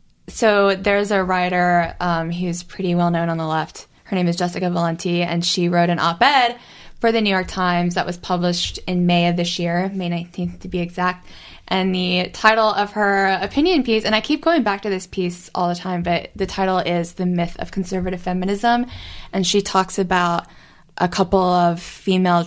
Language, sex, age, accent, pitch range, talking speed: English, female, 10-29, American, 175-205 Hz, 200 wpm